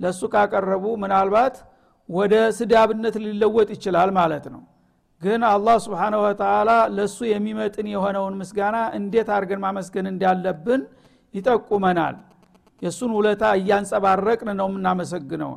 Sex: male